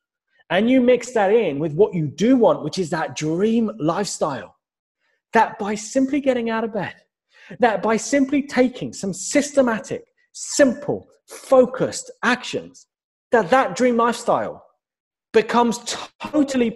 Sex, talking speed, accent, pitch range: male, 135 wpm, British, 190-260 Hz